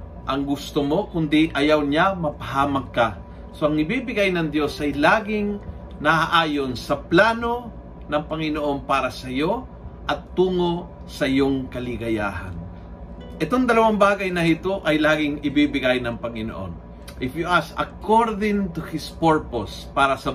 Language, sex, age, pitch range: Filipino, male, 40-59, 125-165 Hz